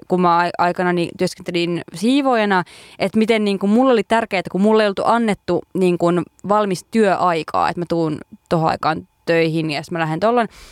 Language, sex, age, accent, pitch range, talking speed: Finnish, female, 20-39, native, 175-215 Hz, 175 wpm